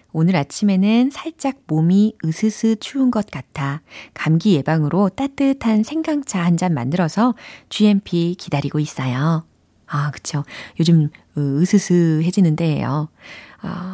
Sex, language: female, Korean